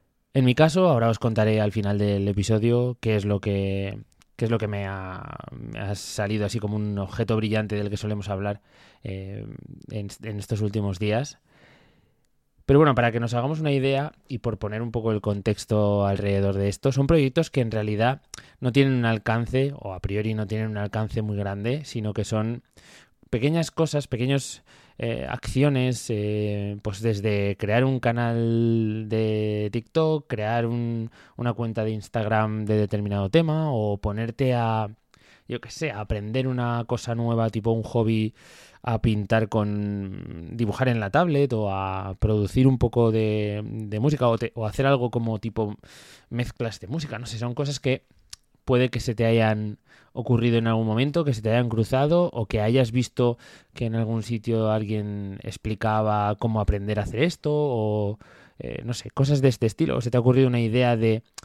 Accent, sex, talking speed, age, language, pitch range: Spanish, male, 185 wpm, 20-39, English, 105-125 Hz